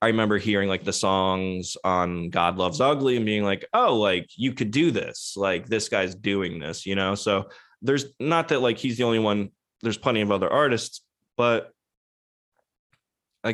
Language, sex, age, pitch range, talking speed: English, male, 20-39, 95-110 Hz, 185 wpm